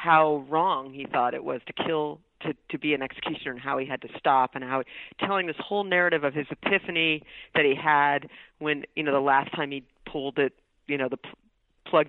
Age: 40-59